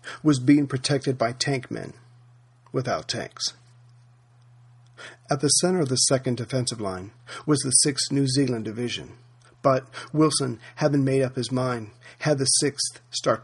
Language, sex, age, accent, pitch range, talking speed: English, male, 50-69, American, 120-140 Hz, 145 wpm